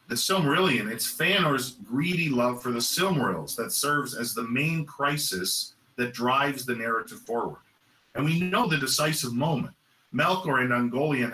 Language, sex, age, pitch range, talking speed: English, male, 40-59, 125-160 Hz, 155 wpm